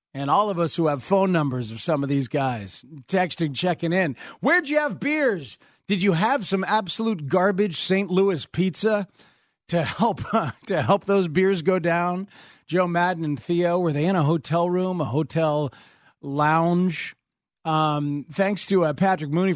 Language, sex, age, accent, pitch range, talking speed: English, male, 40-59, American, 150-190 Hz, 175 wpm